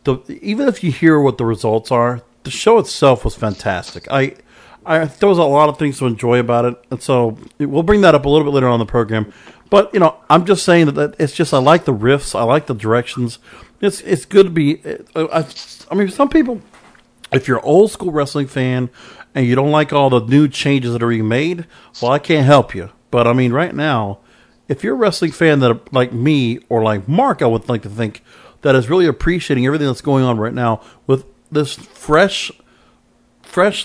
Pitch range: 125-155 Hz